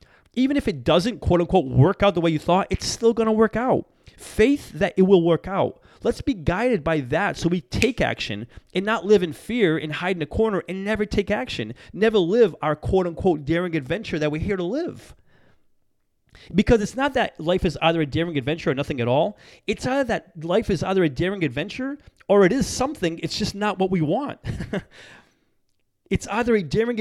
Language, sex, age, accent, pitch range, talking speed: English, male, 30-49, American, 155-215 Hz, 215 wpm